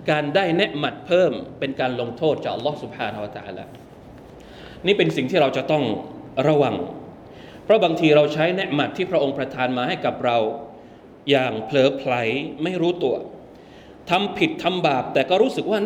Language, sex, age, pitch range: Thai, male, 20-39, 135-170 Hz